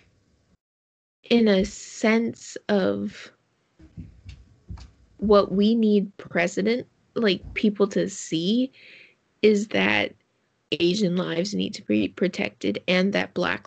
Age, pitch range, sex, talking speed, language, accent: 20-39, 160-255 Hz, female, 100 wpm, English, American